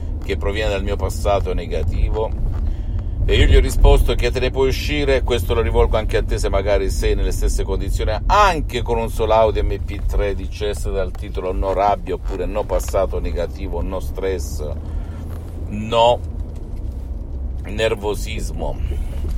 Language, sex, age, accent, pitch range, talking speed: Italian, male, 50-69, native, 80-95 Hz, 145 wpm